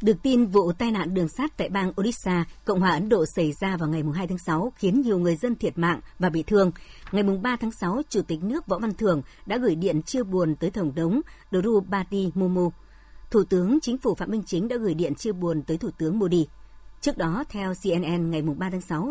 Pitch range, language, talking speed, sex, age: 165-220 Hz, Vietnamese, 230 wpm, male, 60-79